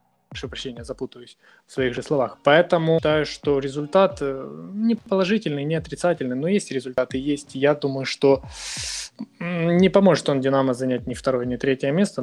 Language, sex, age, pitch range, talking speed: Ukrainian, male, 20-39, 130-155 Hz, 150 wpm